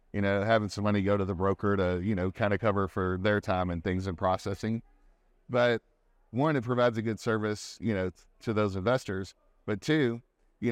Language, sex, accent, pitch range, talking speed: English, male, American, 100-120 Hz, 205 wpm